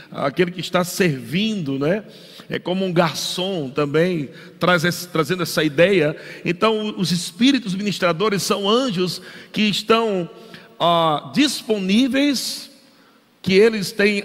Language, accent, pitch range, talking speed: Portuguese, Brazilian, 170-220 Hz, 120 wpm